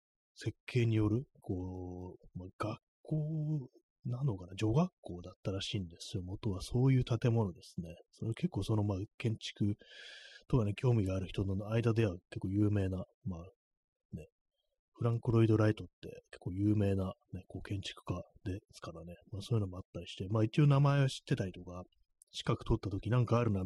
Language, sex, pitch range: Japanese, male, 95-115 Hz